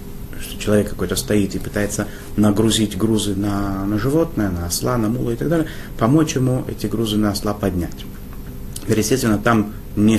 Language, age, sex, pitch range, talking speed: Russian, 30-49, male, 100-115 Hz, 165 wpm